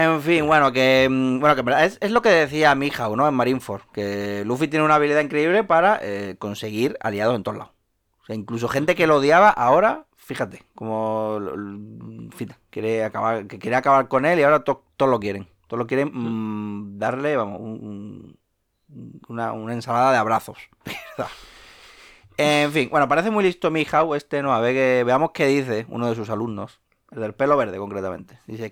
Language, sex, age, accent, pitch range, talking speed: Spanish, male, 30-49, Spanish, 110-145 Hz, 195 wpm